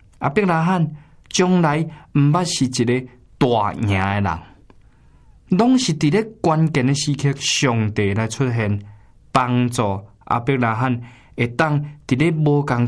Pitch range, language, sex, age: 115-155 Hz, Chinese, male, 20-39